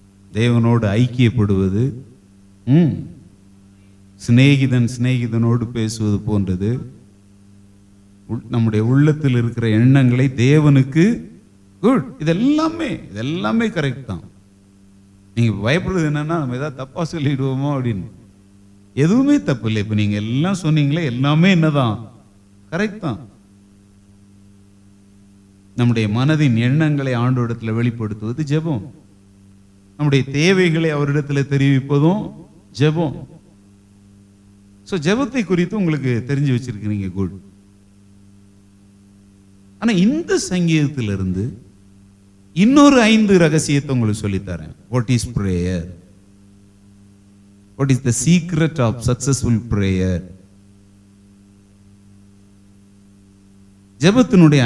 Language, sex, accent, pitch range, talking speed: Tamil, male, native, 100-145 Hz, 50 wpm